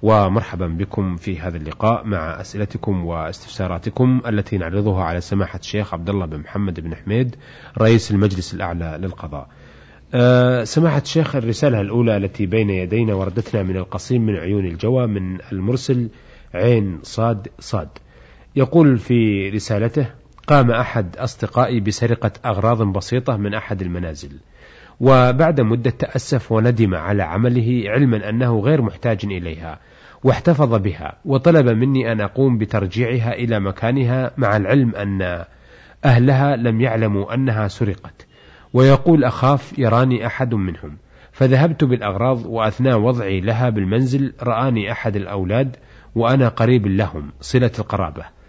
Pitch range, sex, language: 100-125 Hz, male, Arabic